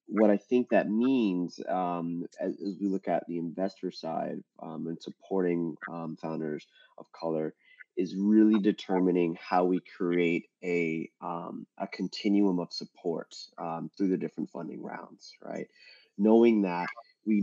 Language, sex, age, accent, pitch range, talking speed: English, male, 20-39, American, 85-100 Hz, 150 wpm